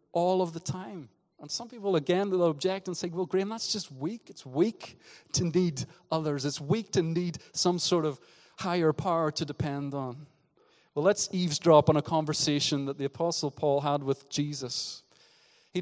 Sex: male